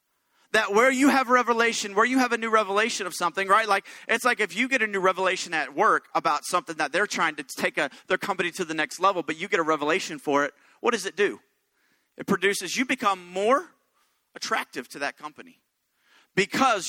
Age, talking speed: 40-59, 215 wpm